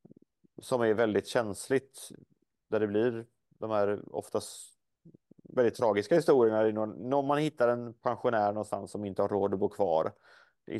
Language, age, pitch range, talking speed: Swedish, 30-49, 100-125 Hz, 150 wpm